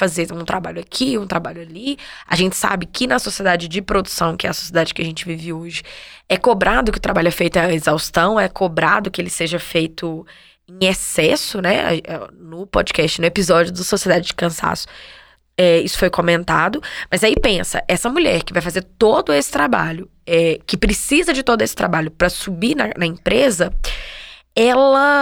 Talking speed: 180 wpm